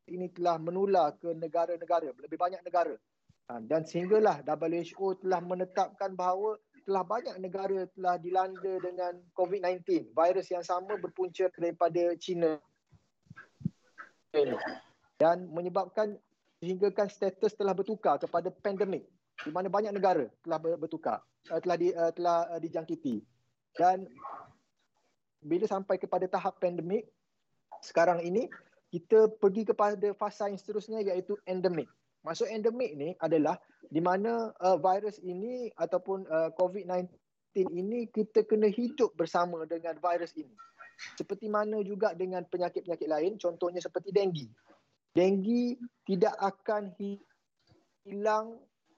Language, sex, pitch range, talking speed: Malay, male, 175-210 Hz, 115 wpm